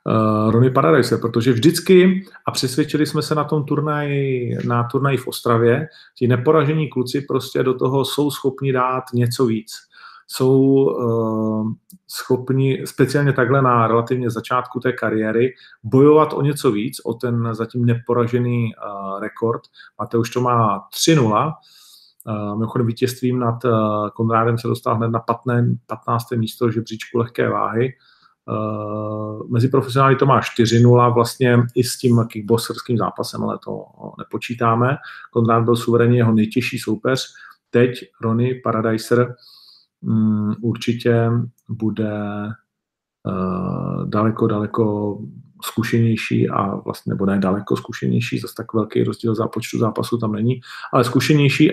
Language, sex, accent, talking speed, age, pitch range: Czech, male, native, 135 wpm, 40-59, 110-130 Hz